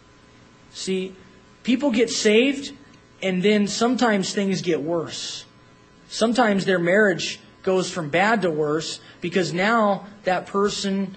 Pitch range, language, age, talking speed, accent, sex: 140-215 Hz, English, 30-49, 120 wpm, American, male